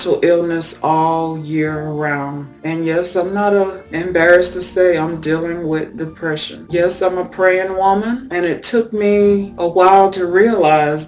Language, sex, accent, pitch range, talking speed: English, female, American, 160-185 Hz, 150 wpm